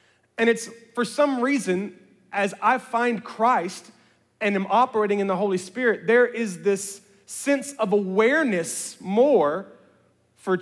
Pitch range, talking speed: 165-220 Hz, 135 wpm